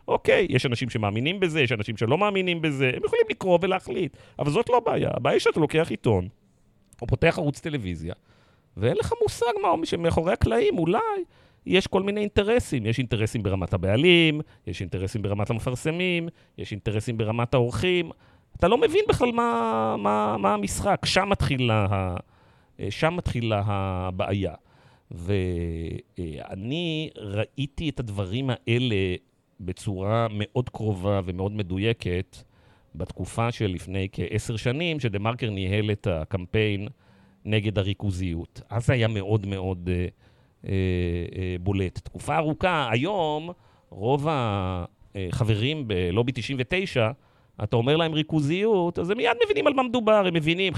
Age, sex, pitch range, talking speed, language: 40-59, male, 100-155 Hz, 135 wpm, Hebrew